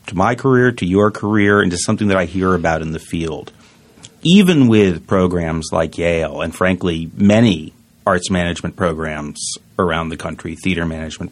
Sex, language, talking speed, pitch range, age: male, English, 170 wpm, 90-110 Hz, 40-59